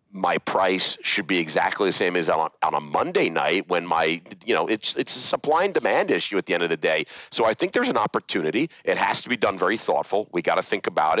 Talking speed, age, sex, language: 250 wpm, 40-59, male, English